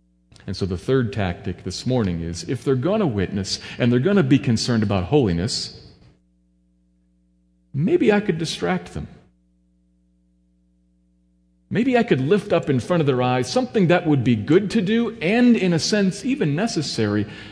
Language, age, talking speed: English, 40-59, 170 wpm